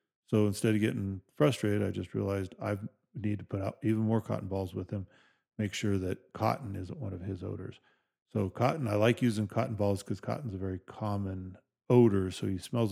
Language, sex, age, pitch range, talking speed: English, male, 40-59, 95-110 Hz, 205 wpm